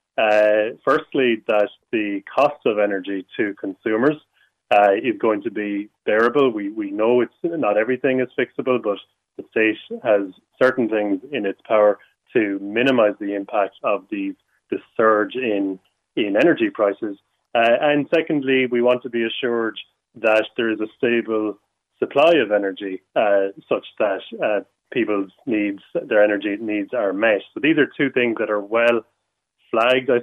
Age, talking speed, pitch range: 30-49, 160 wpm, 105-120 Hz